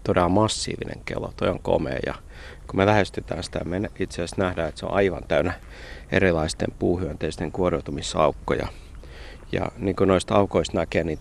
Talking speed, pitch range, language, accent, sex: 160 wpm, 80-100 Hz, Finnish, native, male